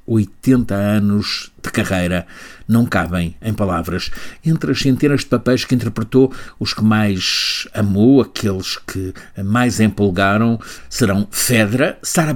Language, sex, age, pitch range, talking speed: Portuguese, male, 60-79, 100-125 Hz, 130 wpm